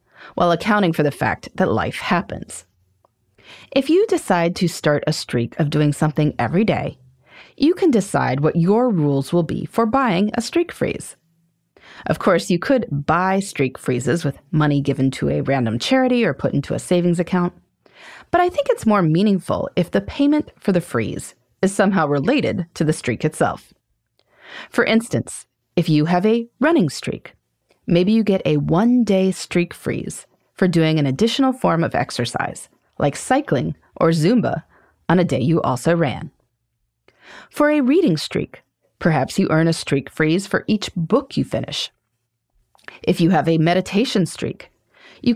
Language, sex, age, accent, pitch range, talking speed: English, female, 30-49, American, 150-210 Hz, 165 wpm